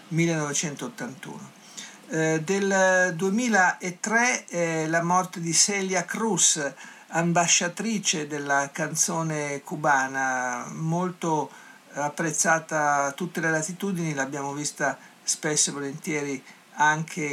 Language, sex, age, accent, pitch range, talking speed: Italian, male, 50-69, native, 145-180 Hz, 90 wpm